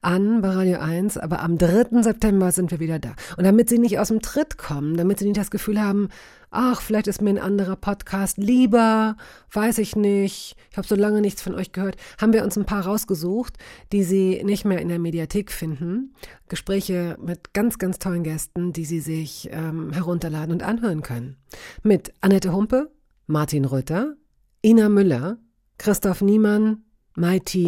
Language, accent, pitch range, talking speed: German, German, 160-210 Hz, 180 wpm